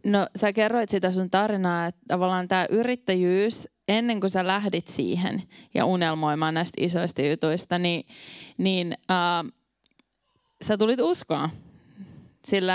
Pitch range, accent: 170-195 Hz, native